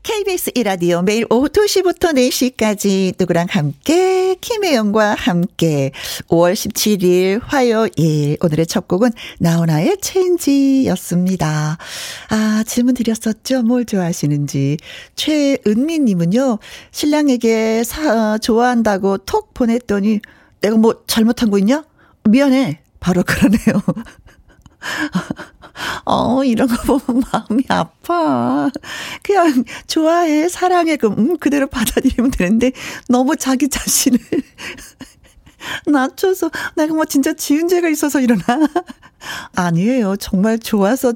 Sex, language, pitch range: female, Korean, 205-285 Hz